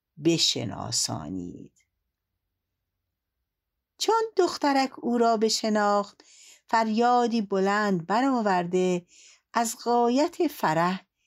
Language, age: Persian, 60-79